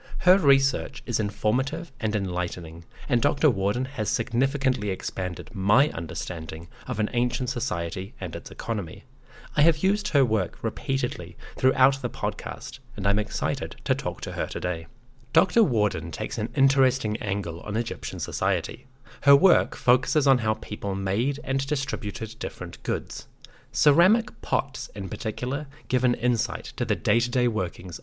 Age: 30-49